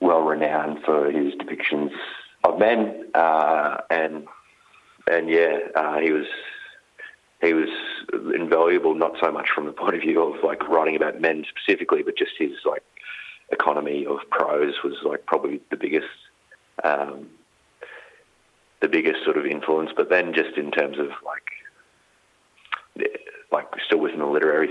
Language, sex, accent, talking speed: English, male, Australian, 150 wpm